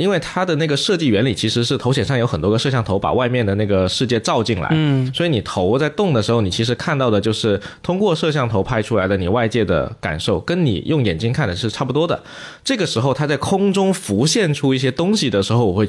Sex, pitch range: male, 100-140 Hz